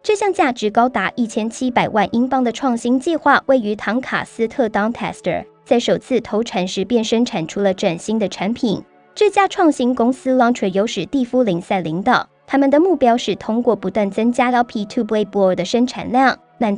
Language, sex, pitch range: Chinese, male, 200-255 Hz